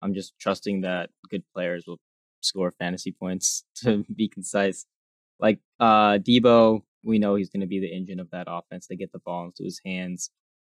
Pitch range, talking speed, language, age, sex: 90-105 Hz, 190 wpm, English, 10-29, male